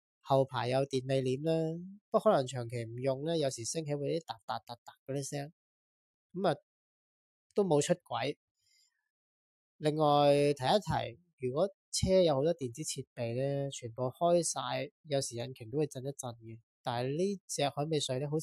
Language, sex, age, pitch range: Chinese, male, 20-39, 125-160 Hz